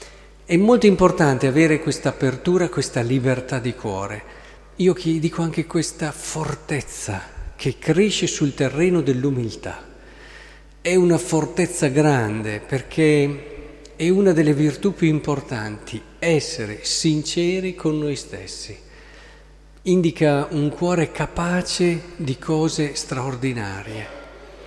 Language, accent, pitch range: Italian, native, 125-165 Hz